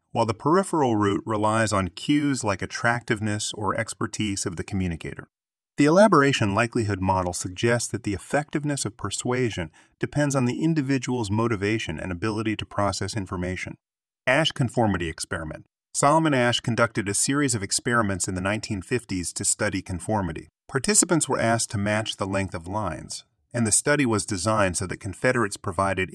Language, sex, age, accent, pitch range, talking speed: English, male, 30-49, American, 95-120 Hz, 155 wpm